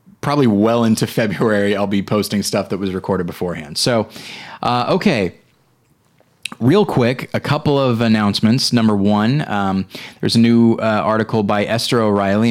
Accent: American